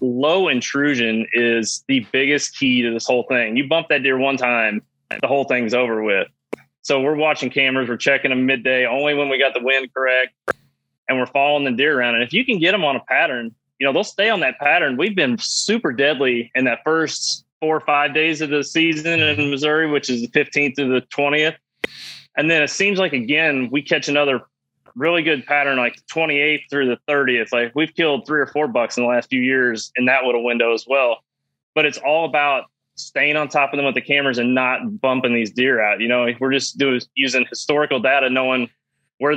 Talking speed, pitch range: 220 wpm, 125-145 Hz